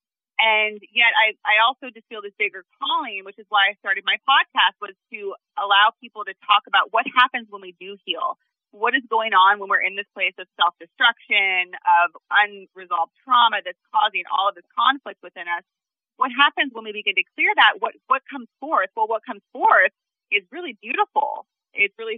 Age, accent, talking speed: 30-49, American, 200 wpm